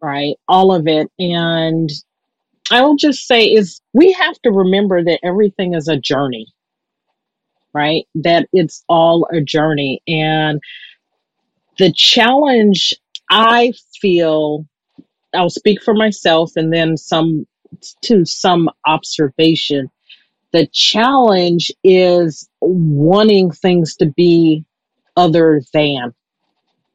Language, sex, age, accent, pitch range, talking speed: English, female, 40-59, American, 155-190 Hz, 110 wpm